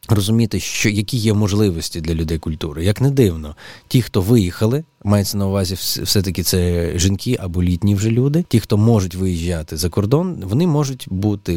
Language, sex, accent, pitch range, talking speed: Ukrainian, male, native, 90-115 Hz, 170 wpm